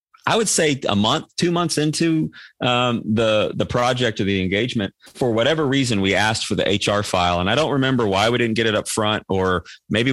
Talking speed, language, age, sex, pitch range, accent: 220 wpm, English, 30-49, male, 100-130 Hz, American